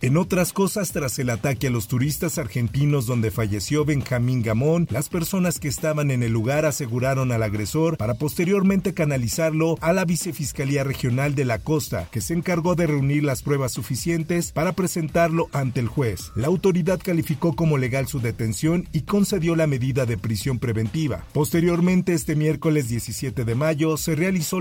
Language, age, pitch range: Spanish, 50-69, 130-170 Hz